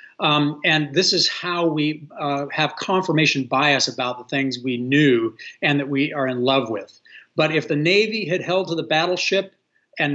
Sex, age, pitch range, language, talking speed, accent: male, 50-69, 140-175 Hz, English, 190 wpm, American